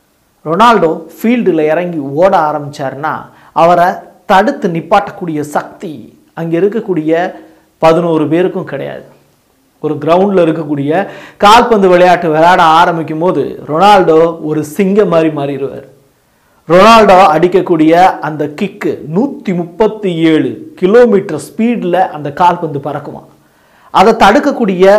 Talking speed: 95 wpm